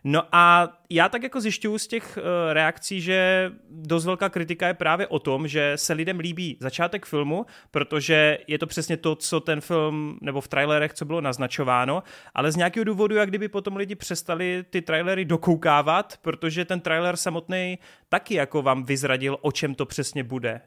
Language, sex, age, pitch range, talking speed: Czech, male, 30-49, 135-170 Hz, 180 wpm